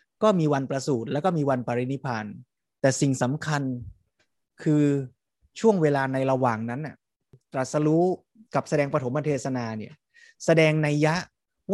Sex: male